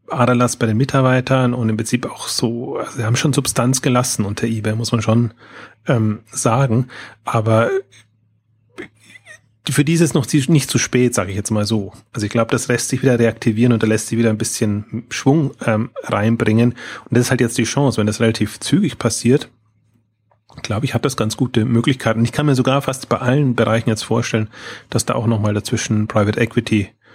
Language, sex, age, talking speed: German, male, 30-49, 195 wpm